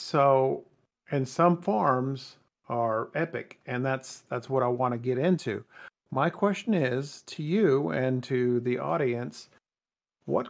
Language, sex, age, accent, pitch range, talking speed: English, male, 50-69, American, 125-155 Hz, 145 wpm